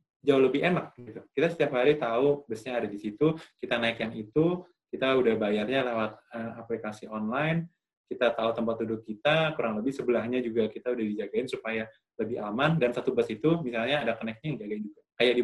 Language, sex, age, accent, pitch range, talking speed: Indonesian, male, 20-39, native, 115-150 Hz, 195 wpm